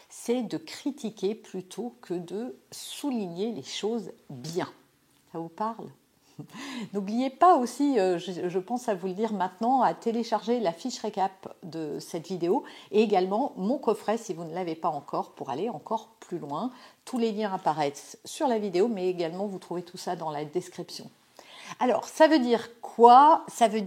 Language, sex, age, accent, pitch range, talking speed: French, female, 50-69, French, 180-250 Hz, 175 wpm